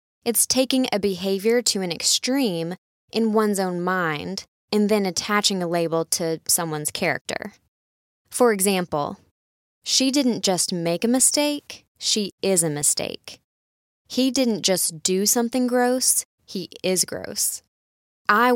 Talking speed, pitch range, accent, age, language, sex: 135 wpm, 170-235 Hz, American, 20-39, English, female